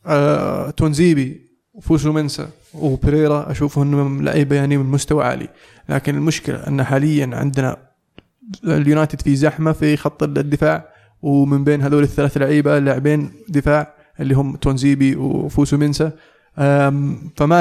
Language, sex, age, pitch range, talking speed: Arabic, male, 20-39, 140-150 Hz, 125 wpm